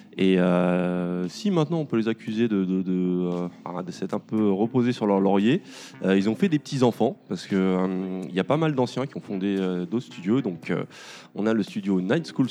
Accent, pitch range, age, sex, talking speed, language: French, 90-110 Hz, 20-39, male, 235 wpm, French